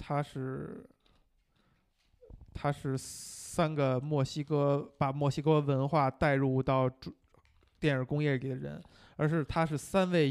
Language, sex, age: Chinese, male, 20-39